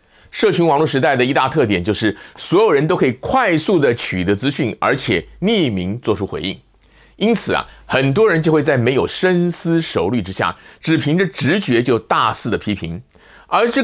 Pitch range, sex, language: 110-170 Hz, male, Chinese